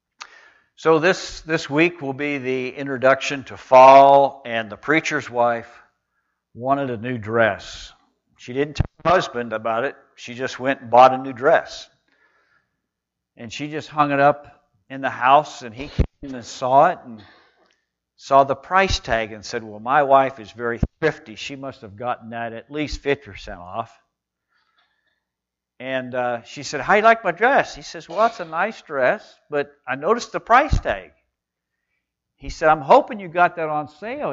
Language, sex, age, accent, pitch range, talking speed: English, male, 60-79, American, 120-175 Hz, 180 wpm